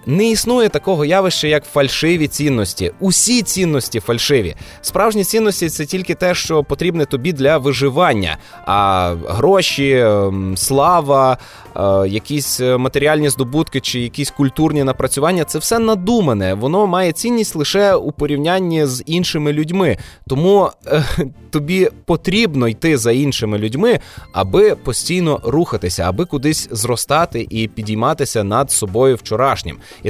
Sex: male